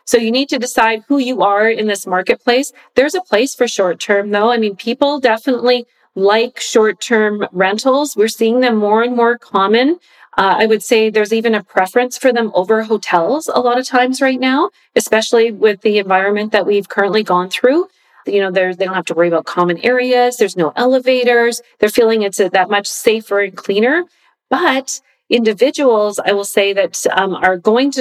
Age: 40-59